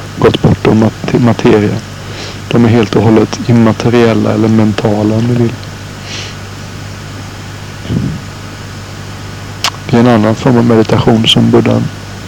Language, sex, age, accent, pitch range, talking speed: Swedish, male, 60-79, native, 105-120 Hz, 115 wpm